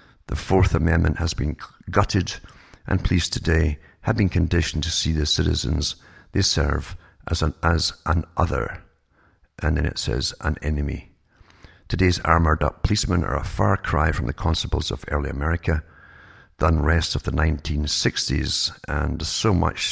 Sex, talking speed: male, 155 wpm